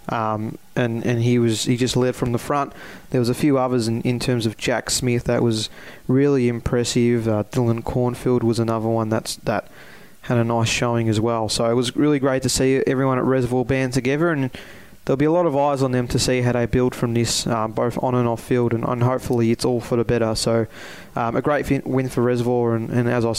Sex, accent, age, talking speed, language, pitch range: male, Australian, 20-39, 240 wpm, English, 120-130 Hz